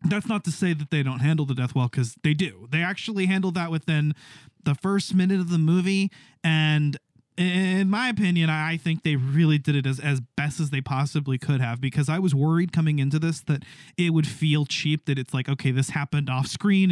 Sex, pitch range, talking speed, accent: male, 150-185 Hz, 225 wpm, American